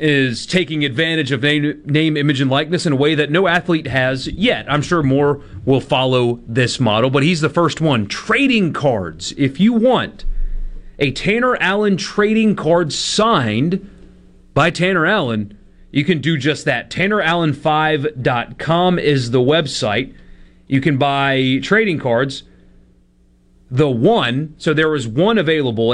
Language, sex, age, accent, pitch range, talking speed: English, male, 30-49, American, 120-160 Hz, 150 wpm